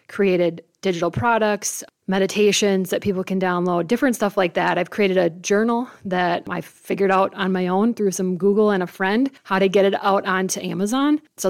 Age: 20-39